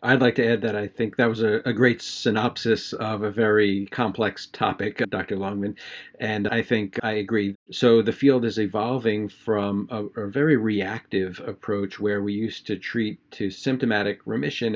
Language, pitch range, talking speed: English, 105-120 Hz, 180 wpm